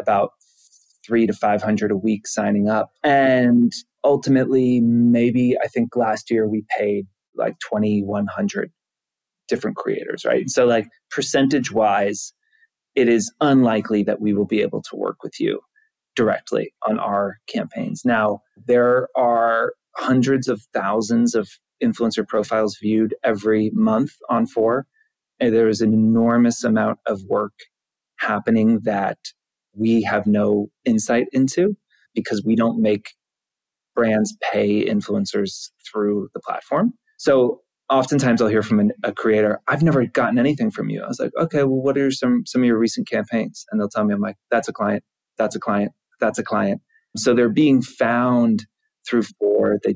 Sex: male